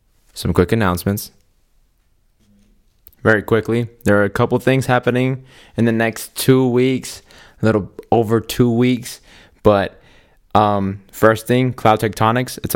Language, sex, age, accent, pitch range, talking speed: English, male, 20-39, American, 95-115 Hz, 130 wpm